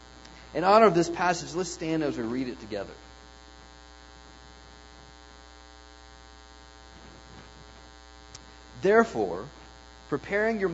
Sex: male